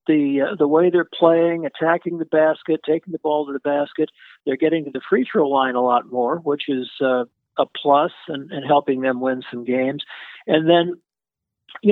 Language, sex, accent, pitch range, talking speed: English, male, American, 135-165 Hz, 195 wpm